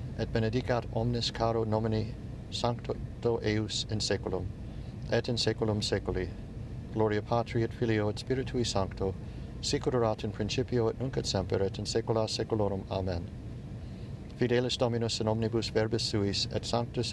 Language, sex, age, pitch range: English, male, 50-69, 110-135 Hz